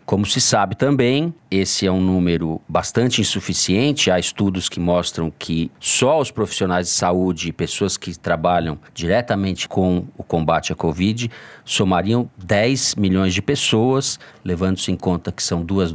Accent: Brazilian